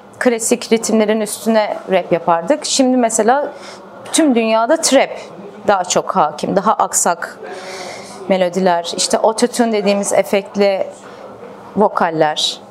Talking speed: 105 wpm